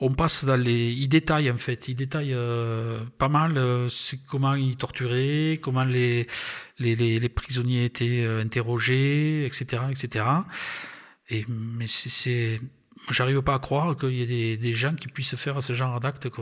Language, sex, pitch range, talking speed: French, male, 120-140 Hz, 175 wpm